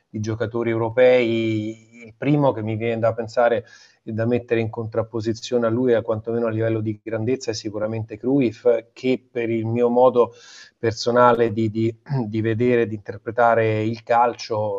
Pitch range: 115-125 Hz